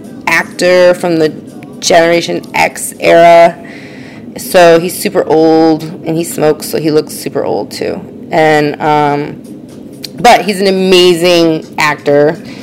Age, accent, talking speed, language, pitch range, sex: 30-49, American, 120 wpm, English, 160-230 Hz, female